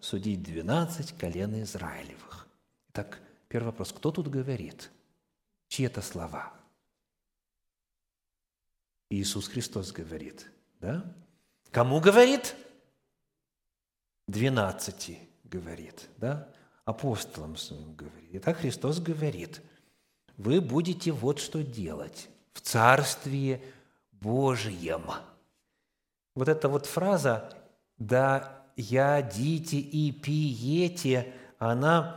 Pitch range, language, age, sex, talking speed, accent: 105-165 Hz, Russian, 50-69, male, 85 wpm, native